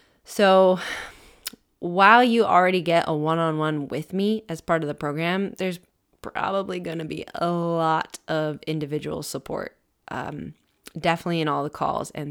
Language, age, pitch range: English, 20-39, 155-185 Hz